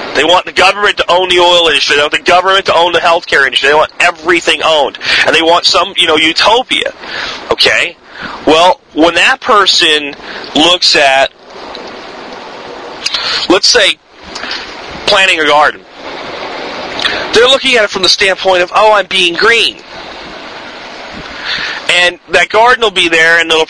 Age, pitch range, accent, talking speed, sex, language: 40-59, 180-265 Hz, American, 155 wpm, male, English